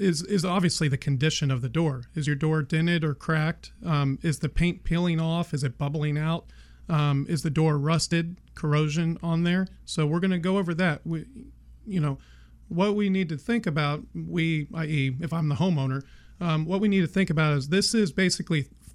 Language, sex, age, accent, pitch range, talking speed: English, male, 40-59, American, 145-175 Hz, 205 wpm